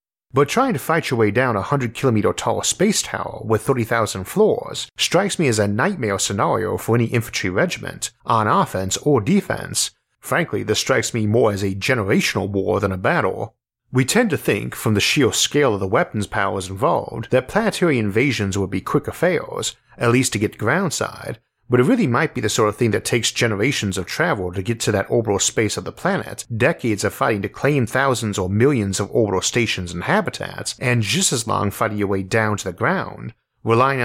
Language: English